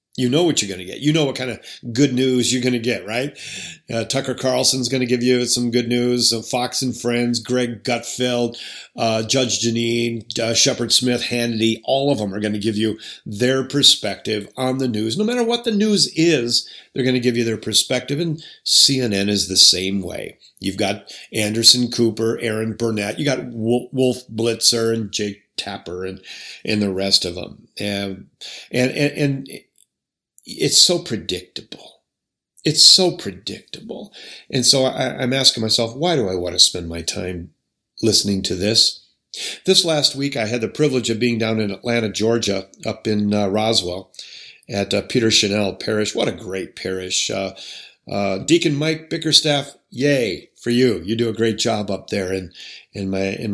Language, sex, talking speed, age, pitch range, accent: English, male, 185 wpm, 50-69, 105-130 Hz, American